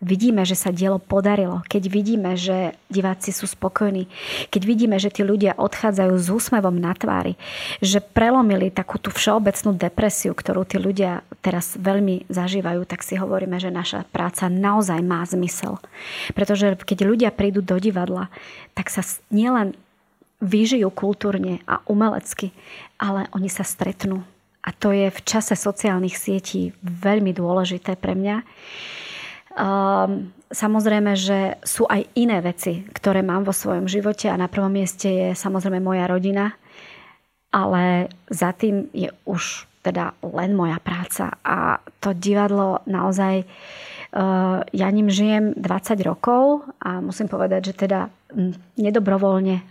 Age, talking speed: 30-49, 135 wpm